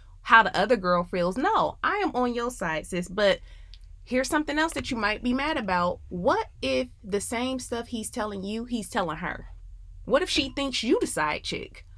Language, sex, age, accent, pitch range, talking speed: English, female, 20-39, American, 190-265 Hz, 205 wpm